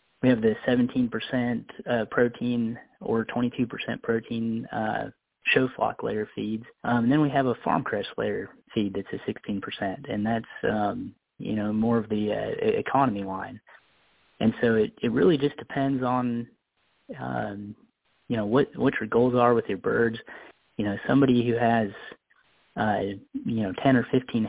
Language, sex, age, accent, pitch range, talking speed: English, male, 30-49, American, 110-125 Hz, 165 wpm